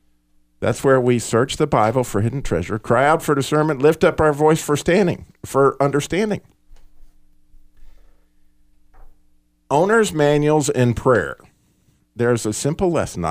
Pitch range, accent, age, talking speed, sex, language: 95-125 Hz, American, 50-69, 130 wpm, male, English